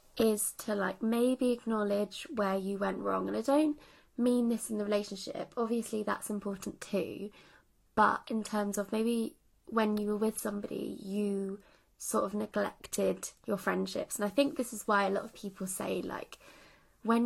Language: English